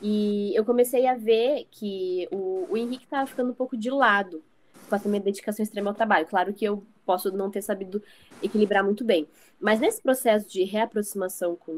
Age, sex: 20-39, female